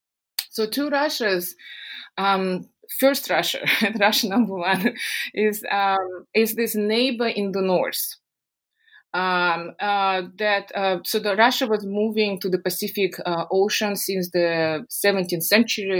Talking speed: 130 wpm